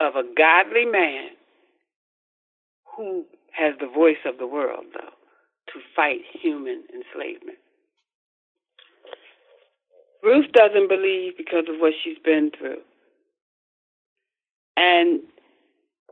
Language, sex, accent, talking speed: English, female, American, 95 wpm